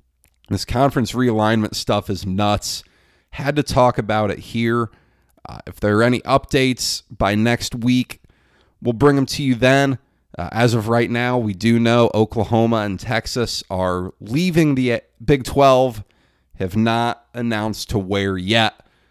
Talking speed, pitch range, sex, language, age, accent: 155 wpm, 105-135 Hz, male, English, 30-49, American